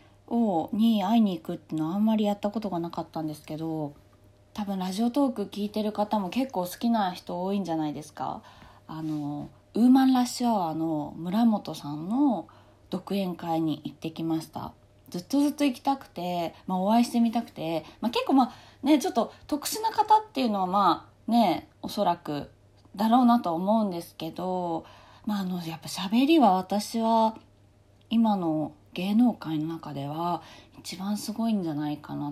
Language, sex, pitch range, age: Japanese, female, 155-225 Hz, 20-39